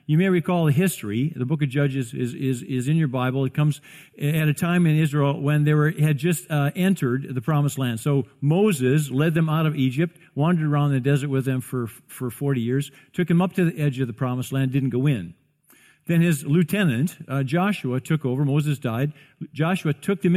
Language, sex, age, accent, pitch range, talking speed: English, male, 50-69, American, 130-160 Hz, 220 wpm